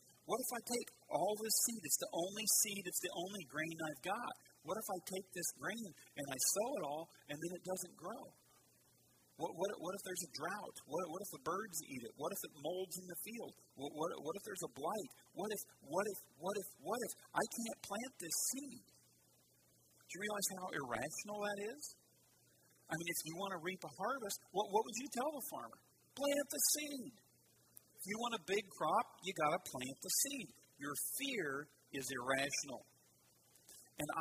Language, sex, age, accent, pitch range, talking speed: English, male, 40-59, American, 145-205 Hz, 205 wpm